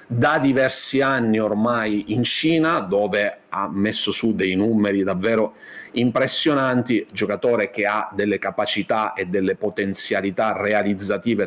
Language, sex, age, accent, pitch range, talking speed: Italian, male, 30-49, native, 100-110 Hz, 120 wpm